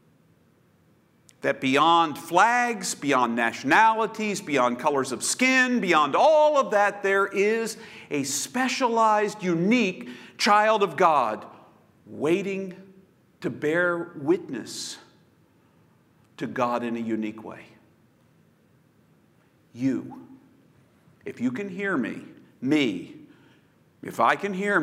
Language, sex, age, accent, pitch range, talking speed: English, male, 50-69, American, 165-250 Hz, 100 wpm